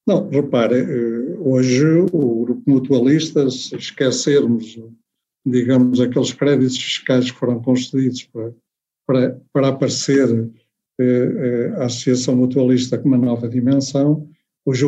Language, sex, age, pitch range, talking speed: Portuguese, male, 50-69, 125-155 Hz, 110 wpm